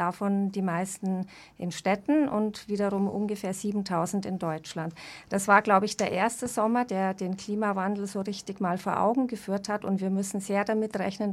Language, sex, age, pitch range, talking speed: German, female, 40-59, 190-215 Hz, 180 wpm